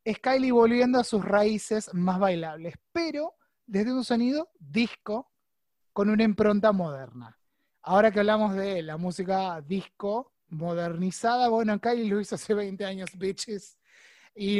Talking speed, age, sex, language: 140 wpm, 20-39, male, Spanish